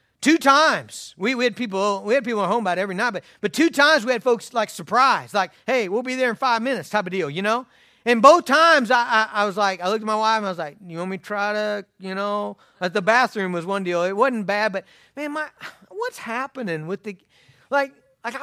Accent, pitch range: American, 170-245 Hz